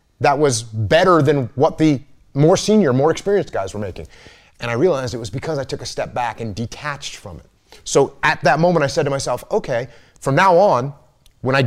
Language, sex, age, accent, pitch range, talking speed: English, male, 30-49, American, 115-155 Hz, 215 wpm